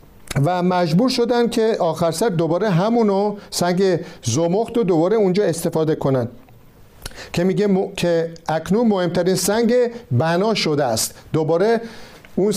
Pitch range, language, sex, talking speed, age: 160-225 Hz, Persian, male, 130 wpm, 50-69